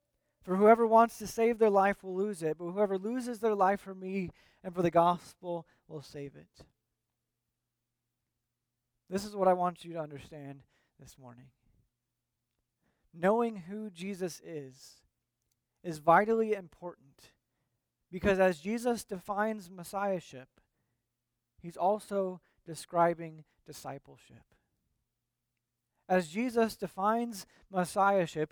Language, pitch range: English, 120-205 Hz